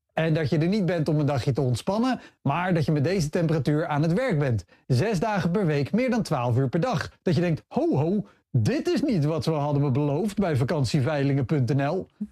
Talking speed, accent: 225 wpm, Dutch